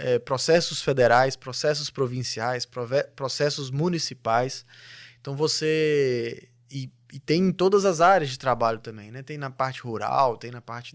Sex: male